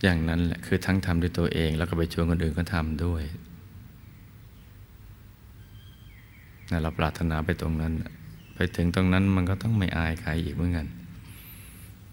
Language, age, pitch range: Thai, 20-39, 85-100 Hz